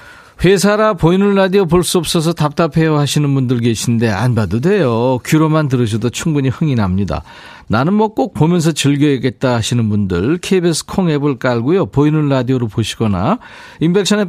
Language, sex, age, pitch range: Korean, male, 40-59, 125-180 Hz